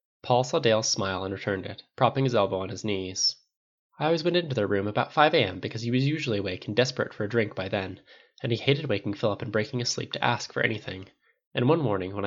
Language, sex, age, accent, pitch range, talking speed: English, male, 10-29, American, 100-135 Hz, 250 wpm